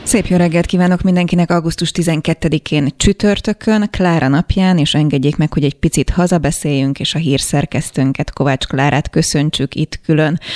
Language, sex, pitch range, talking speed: Hungarian, female, 150-180 Hz, 140 wpm